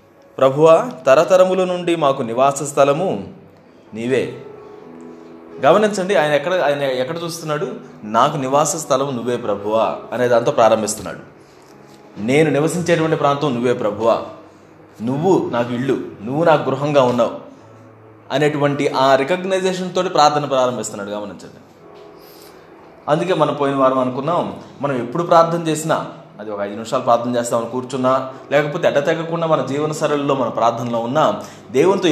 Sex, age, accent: male, 20-39, native